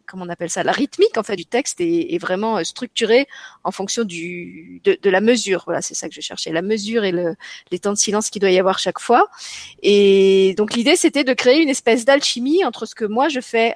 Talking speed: 245 wpm